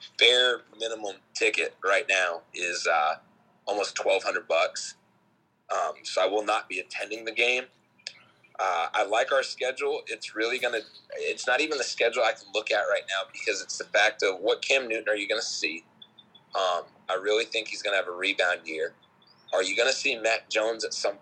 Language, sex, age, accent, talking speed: English, male, 30-49, American, 190 wpm